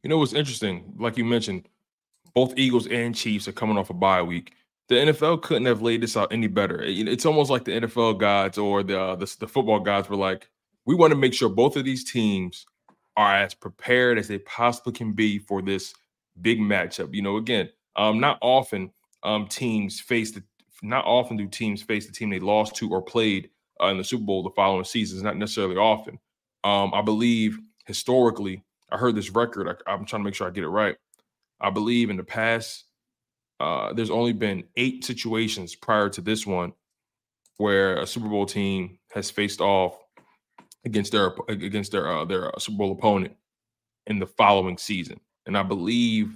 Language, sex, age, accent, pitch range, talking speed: English, male, 20-39, American, 100-120 Hz, 200 wpm